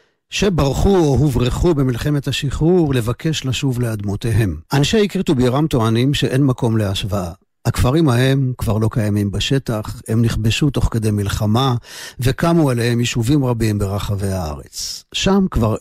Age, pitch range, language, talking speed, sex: 50-69, 110-140 Hz, Hebrew, 130 wpm, male